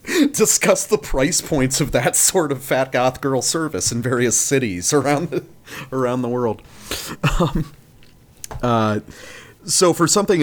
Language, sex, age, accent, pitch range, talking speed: English, male, 40-59, American, 110-145 Hz, 140 wpm